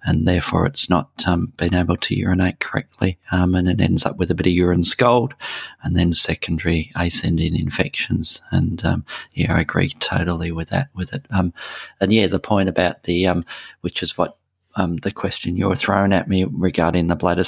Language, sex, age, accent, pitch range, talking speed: English, male, 40-59, Australian, 90-100 Hz, 195 wpm